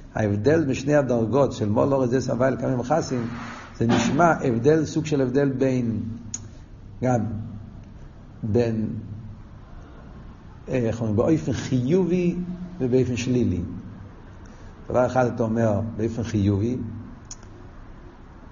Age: 50-69